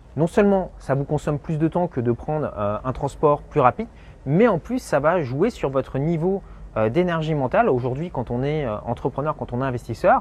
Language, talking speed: French, 225 wpm